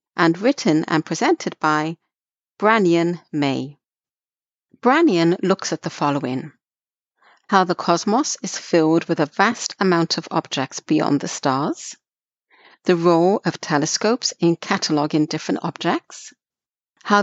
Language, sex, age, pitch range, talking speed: English, female, 50-69, 155-215 Hz, 120 wpm